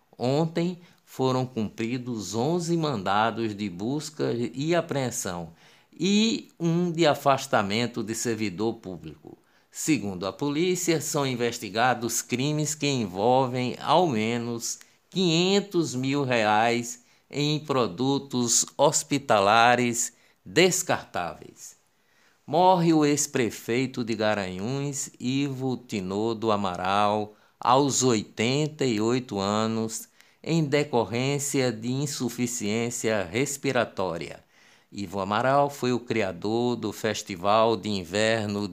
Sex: male